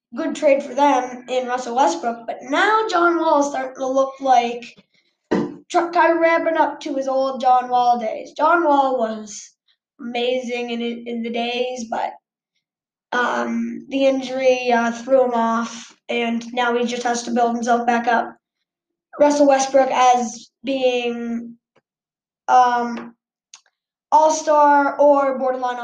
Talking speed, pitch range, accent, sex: 140 wpm, 240-295 Hz, American, female